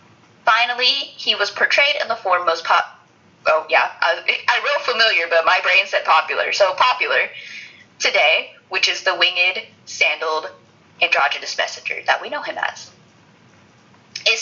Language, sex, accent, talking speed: English, female, American, 150 wpm